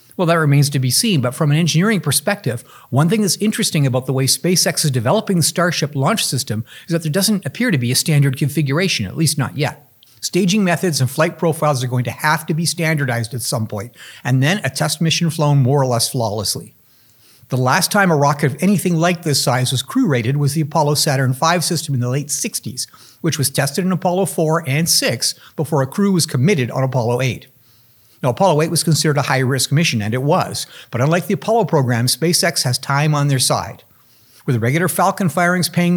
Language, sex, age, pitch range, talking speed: English, male, 50-69, 130-170 Hz, 215 wpm